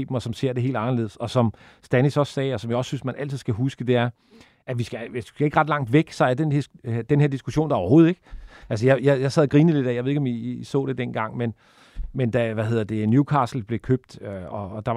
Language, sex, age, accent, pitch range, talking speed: Danish, male, 40-59, native, 120-145 Hz, 285 wpm